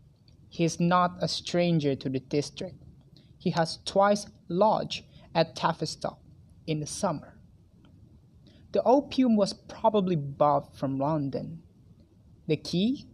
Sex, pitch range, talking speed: male, 140-205 Hz, 120 wpm